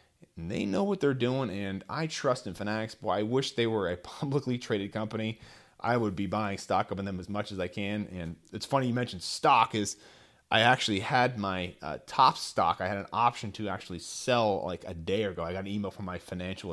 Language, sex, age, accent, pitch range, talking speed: English, male, 30-49, American, 100-140 Hz, 230 wpm